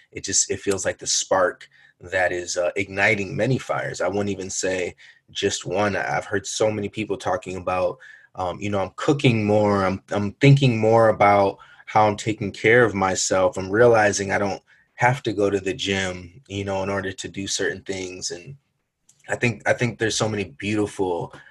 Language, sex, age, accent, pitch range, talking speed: English, male, 20-39, American, 95-110 Hz, 195 wpm